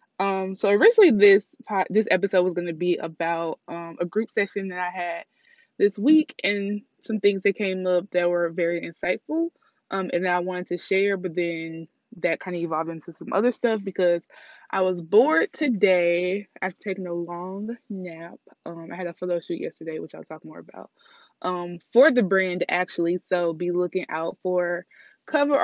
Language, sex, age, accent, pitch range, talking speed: English, female, 20-39, American, 170-215 Hz, 185 wpm